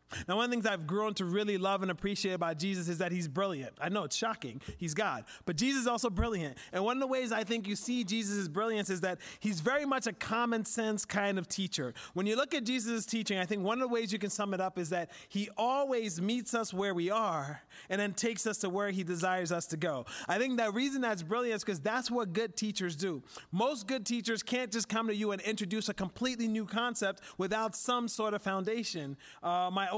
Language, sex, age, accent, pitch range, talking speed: English, male, 30-49, American, 190-235 Hz, 245 wpm